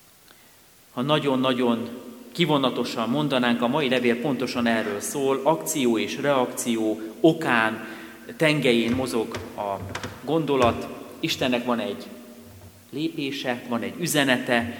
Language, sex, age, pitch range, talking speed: Hungarian, male, 40-59, 115-145 Hz, 100 wpm